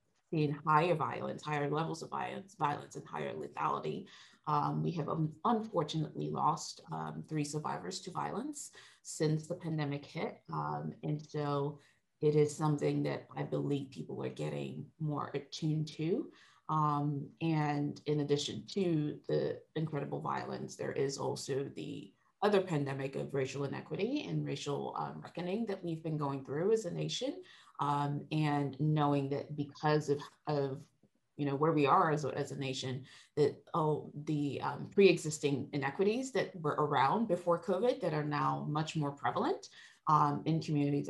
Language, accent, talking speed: English, American, 155 wpm